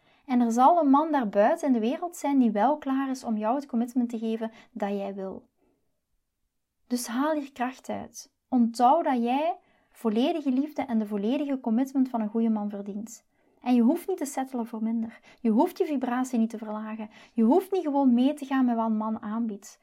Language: Dutch